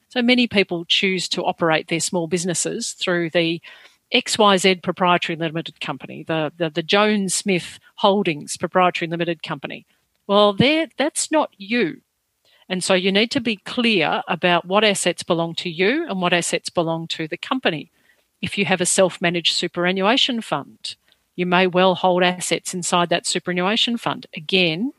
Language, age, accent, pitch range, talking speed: English, 50-69, Australian, 170-205 Hz, 160 wpm